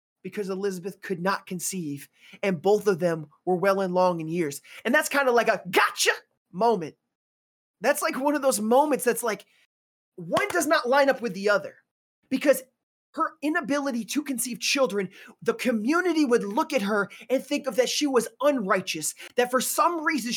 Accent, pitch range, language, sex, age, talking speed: American, 185-270 Hz, English, male, 20-39, 185 wpm